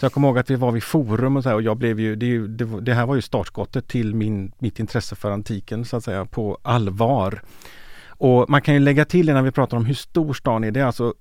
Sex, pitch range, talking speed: male, 110-135 Hz, 280 wpm